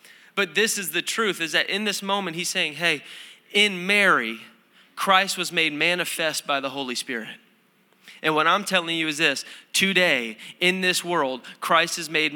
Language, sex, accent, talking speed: English, male, American, 180 wpm